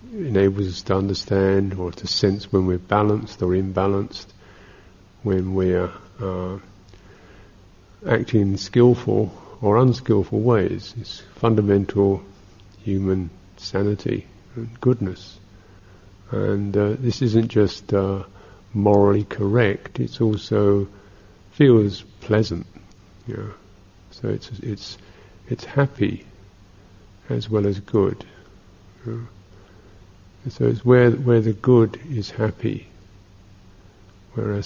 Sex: male